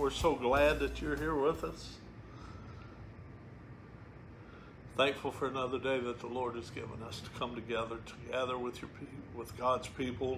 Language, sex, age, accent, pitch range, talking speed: English, male, 50-69, American, 115-135 Hz, 155 wpm